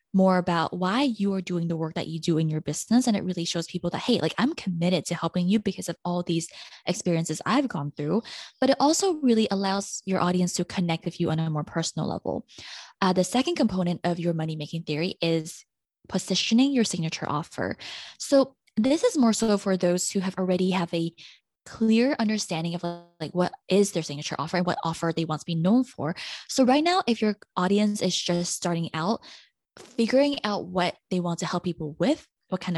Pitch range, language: 170-220 Hz, English